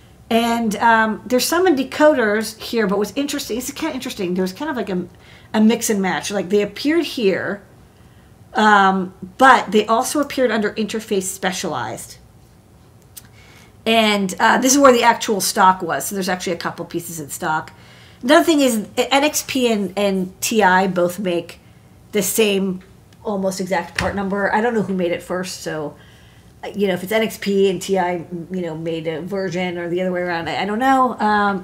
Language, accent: English, American